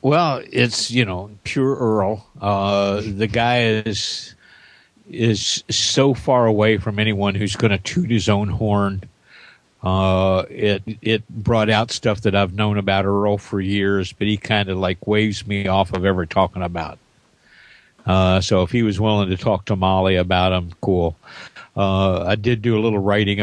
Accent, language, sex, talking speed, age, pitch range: American, English, male, 175 wpm, 50-69, 95-115 Hz